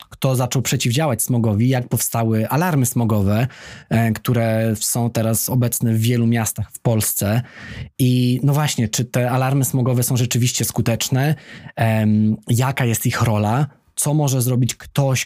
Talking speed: 140 wpm